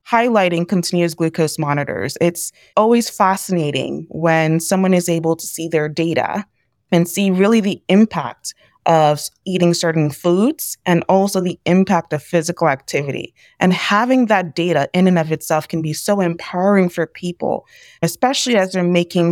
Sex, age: female, 20-39